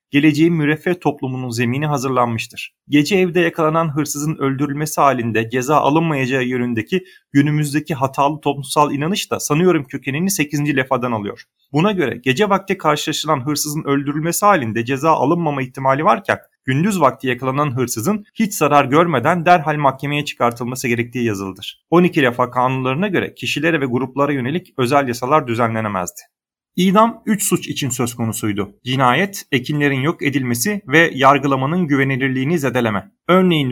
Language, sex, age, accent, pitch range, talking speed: Turkish, male, 30-49, native, 125-165 Hz, 130 wpm